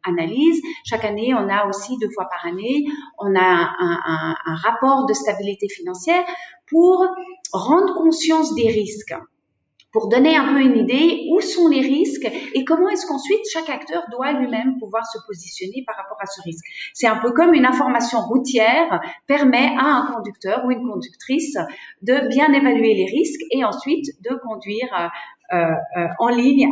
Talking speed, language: 175 wpm, French